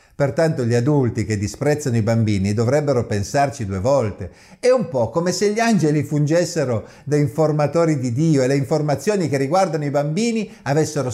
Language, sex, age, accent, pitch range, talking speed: Italian, male, 50-69, native, 110-170 Hz, 165 wpm